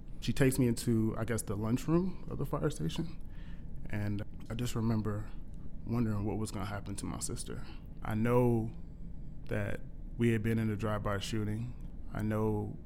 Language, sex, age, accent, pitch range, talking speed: English, male, 20-39, American, 95-110 Hz, 170 wpm